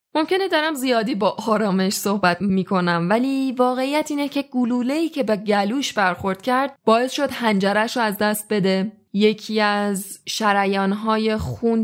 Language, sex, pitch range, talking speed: Persian, female, 185-240 Hz, 140 wpm